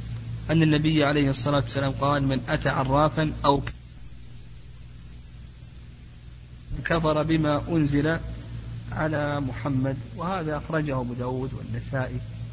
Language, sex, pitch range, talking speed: Arabic, male, 115-155 Hz, 95 wpm